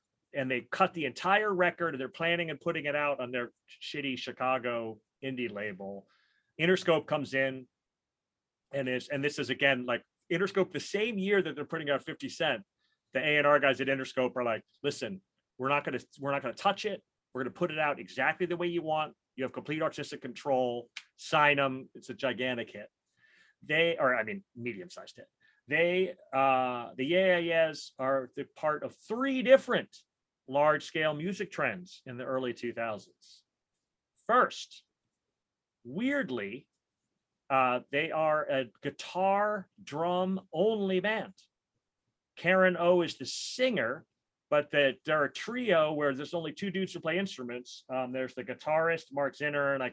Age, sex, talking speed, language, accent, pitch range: 30-49, male, 170 wpm, English, American, 130-175 Hz